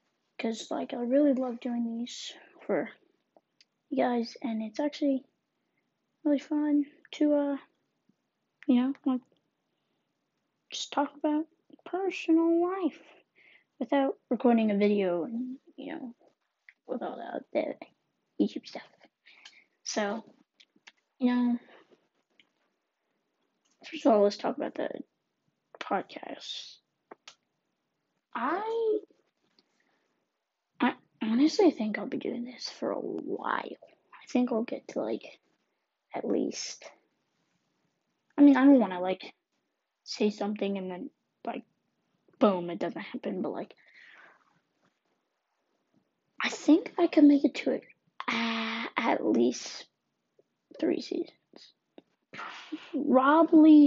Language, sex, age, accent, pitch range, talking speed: English, female, 20-39, American, 240-310 Hz, 110 wpm